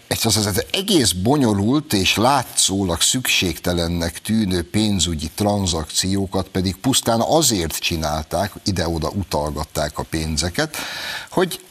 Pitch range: 85-115 Hz